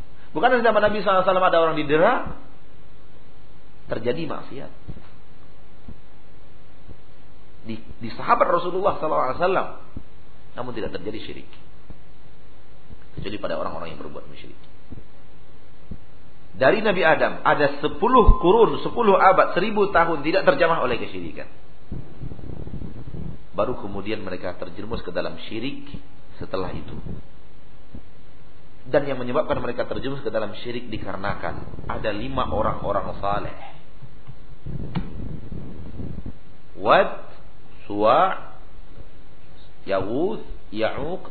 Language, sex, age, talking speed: Malay, male, 40-59, 95 wpm